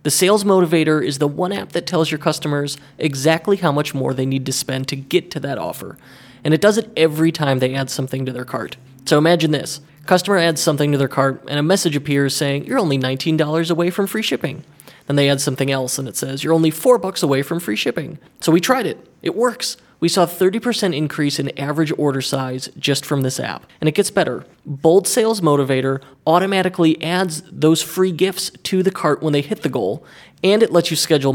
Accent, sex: American, male